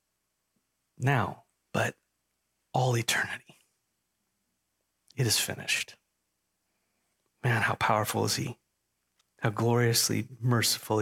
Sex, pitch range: male, 120-140 Hz